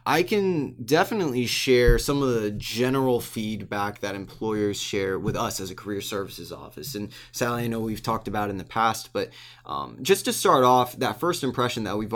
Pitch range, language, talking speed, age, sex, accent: 105-130 Hz, English, 195 wpm, 20-39, male, American